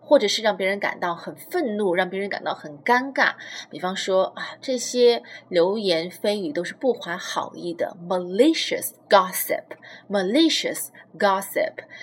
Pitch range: 190-280 Hz